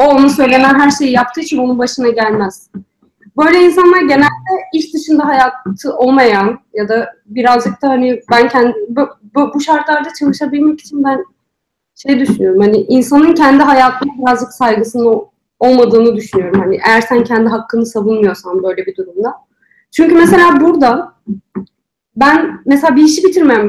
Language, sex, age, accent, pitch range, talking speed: Turkish, female, 30-49, native, 240-330 Hz, 140 wpm